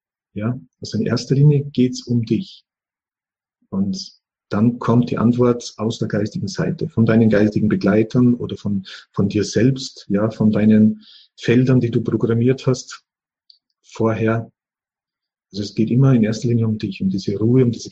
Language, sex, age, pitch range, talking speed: German, male, 40-59, 110-130 Hz, 165 wpm